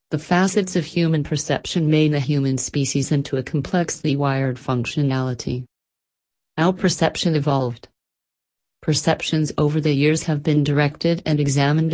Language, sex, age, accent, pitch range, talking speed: English, female, 40-59, American, 135-160 Hz, 130 wpm